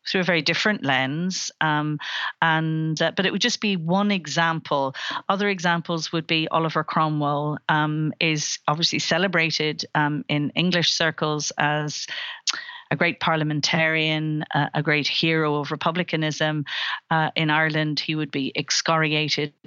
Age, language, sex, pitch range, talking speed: 40-59, English, female, 150-165 Hz, 135 wpm